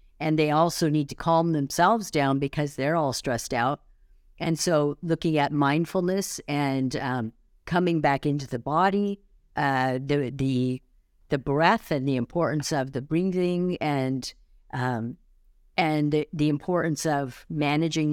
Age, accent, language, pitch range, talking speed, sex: 50-69, American, English, 130-160 Hz, 145 wpm, female